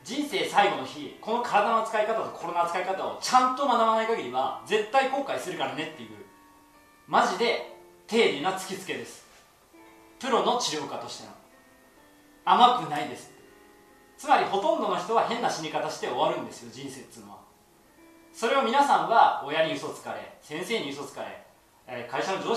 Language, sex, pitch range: Japanese, male, 170-270 Hz